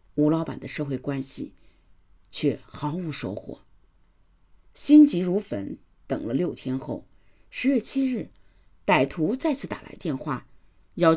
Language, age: Chinese, 50-69